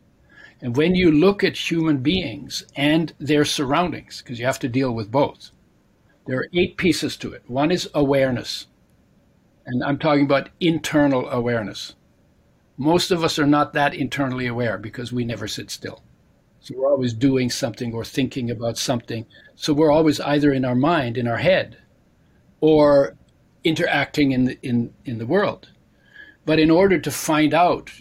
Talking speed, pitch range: 165 wpm, 130-155 Hz